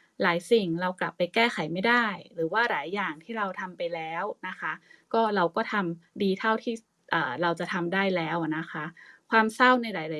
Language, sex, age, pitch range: Thai, female, 20-39, 170-215 Hz